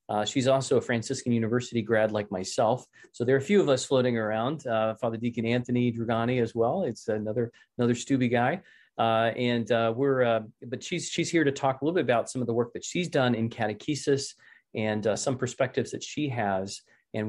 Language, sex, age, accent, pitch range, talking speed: English, male, 30-49, American, 115-135 Hz, 215 wpm